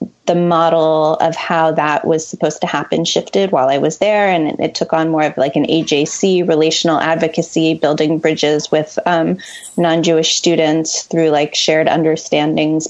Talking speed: 165 wpm